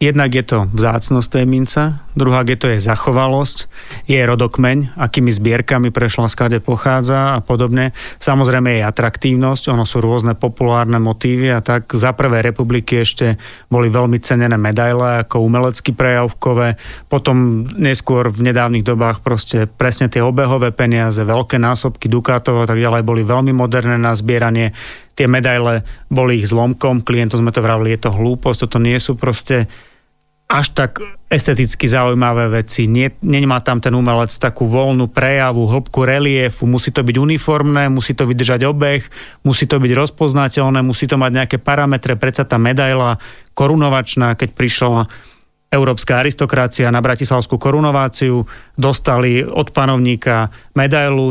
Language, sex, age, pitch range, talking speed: Slovak, male, 30-49, 120-135 Hz, 145 wpm